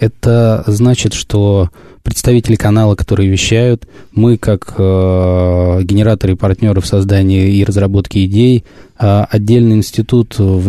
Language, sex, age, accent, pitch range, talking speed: Russian, male, 20-39, native, 95-110 Hz, 125 wpm